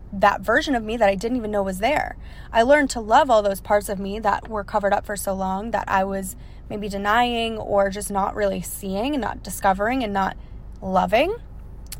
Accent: American